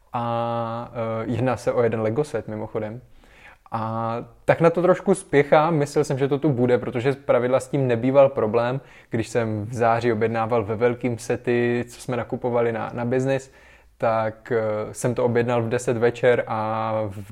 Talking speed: 175 wpm